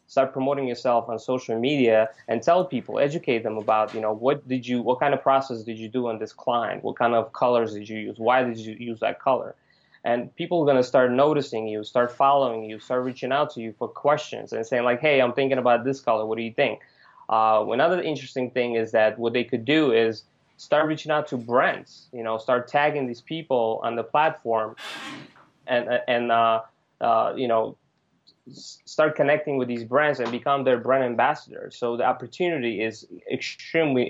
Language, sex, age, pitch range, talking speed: English, male, 20-39, 115-135 Hz, 205 wpm